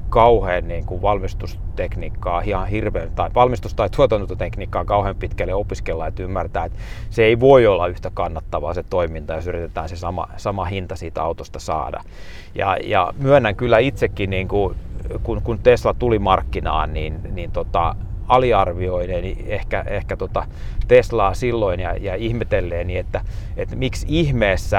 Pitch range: 90-105 Hz